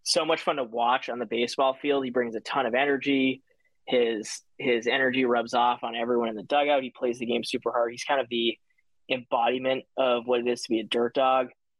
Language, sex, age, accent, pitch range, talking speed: English, male, 20-39, American, 115-130 Hz, 230 wpm